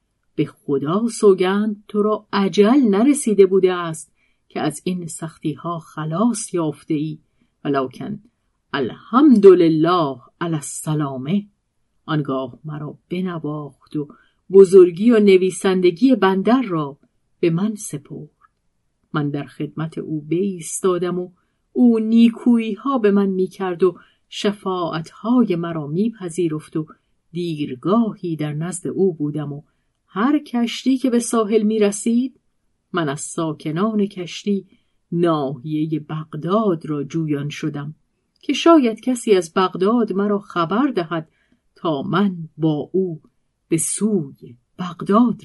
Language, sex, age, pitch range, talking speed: Persian, female, 50-69, 155-215 Hz, 115 wpm